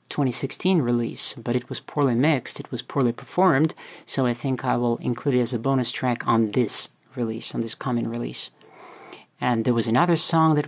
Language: English